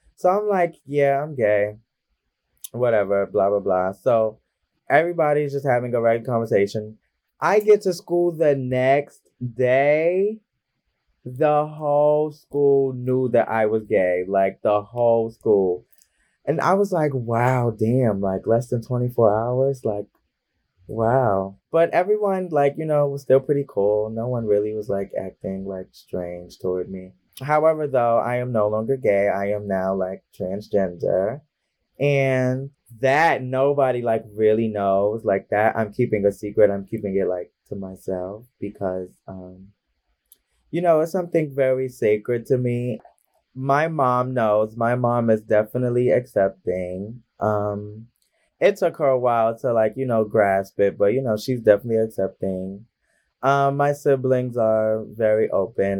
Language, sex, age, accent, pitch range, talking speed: English, male, 20-39, American, 100-135 Hz, 150 wpm